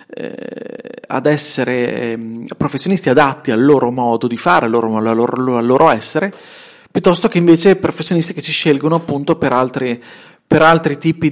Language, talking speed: Italian, 135 wpm